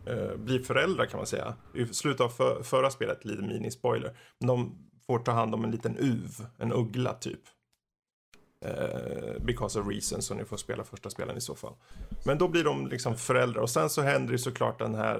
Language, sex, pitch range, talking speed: Swedish, male, 110-130 Hz, 210 wpm